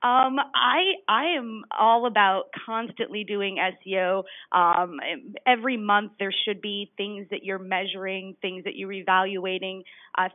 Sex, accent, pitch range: female, American, 190-230 Hz